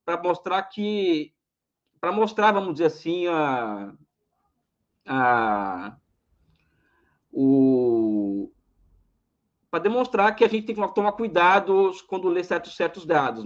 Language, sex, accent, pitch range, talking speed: Portuguese, male, Brazilian, 165-225 Hz, 110 wpm